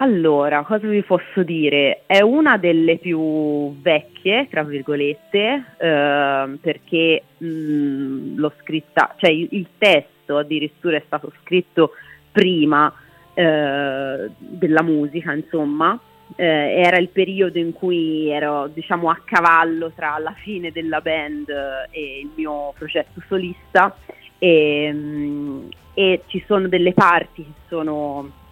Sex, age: female, 30-49